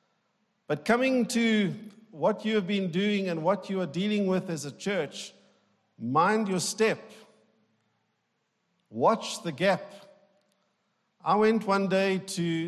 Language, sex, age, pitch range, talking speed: English, male, 50-69, 190-225 Hz, 135 wpm